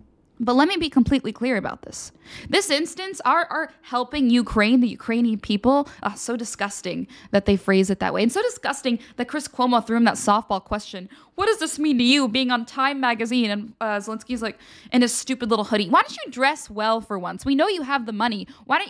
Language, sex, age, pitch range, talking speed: English, female, 20-39, 215-285 Hz, 225 wpm